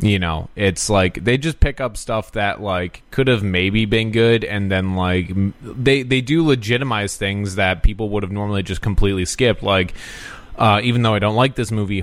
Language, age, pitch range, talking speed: English, 20-39, 90-110 Hz, 205 wpm